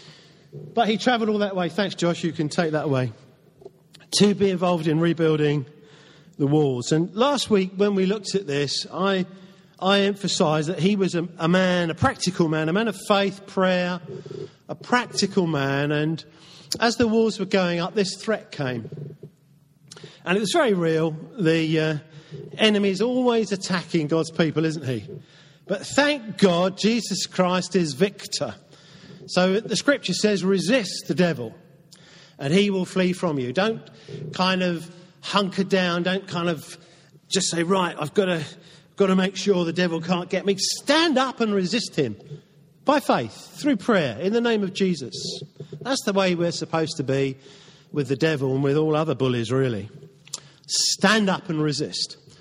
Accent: British